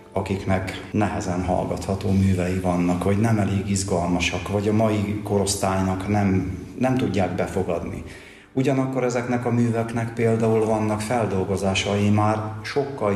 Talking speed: 120 wpm